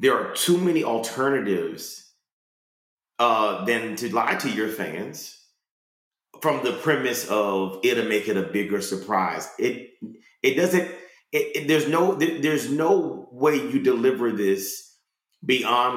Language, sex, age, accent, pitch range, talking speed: English, male, 30-49, American, 110-165 Hz, 145 wpm